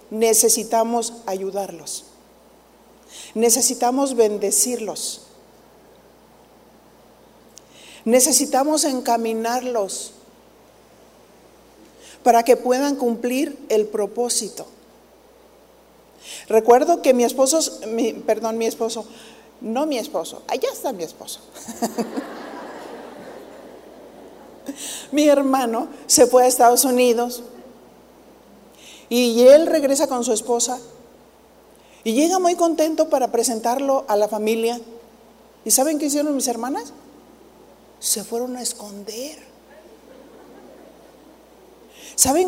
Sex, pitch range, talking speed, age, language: female, 225-280 Hz, 85 wpm, 50-69, Spanish